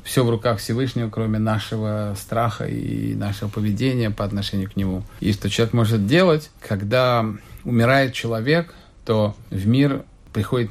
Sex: male